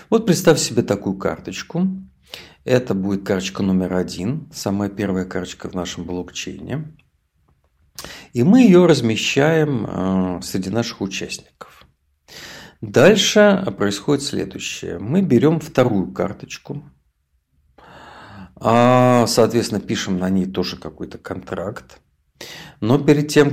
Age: 50-69